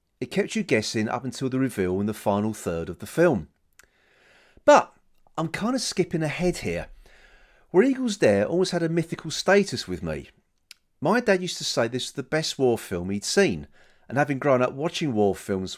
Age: 40-59